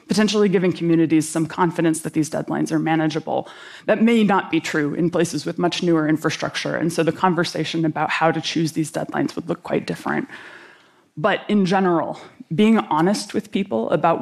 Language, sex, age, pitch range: Korean, female, 20-39, 160-190 Hz